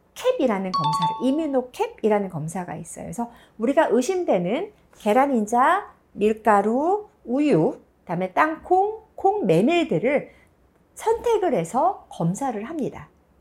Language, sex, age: Korean, female, 50-69